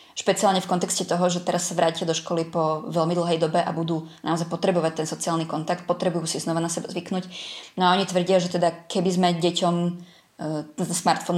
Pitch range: 165-185 Hz